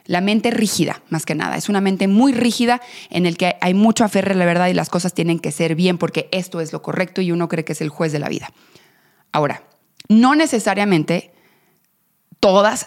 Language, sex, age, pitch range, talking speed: Spanish, female, 30-49, 165-195 Hz, 215 wpm